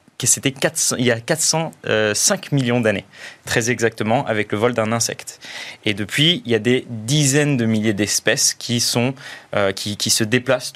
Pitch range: 110-145 Hz